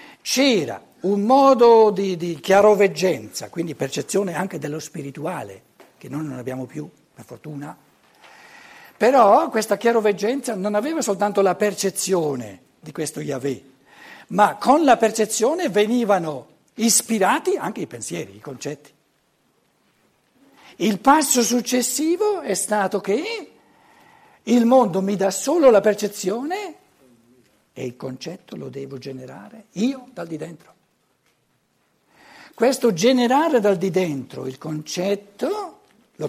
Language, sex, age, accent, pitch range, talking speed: Italian, male, 60-79, native, 150-240 Hz, 115 wpm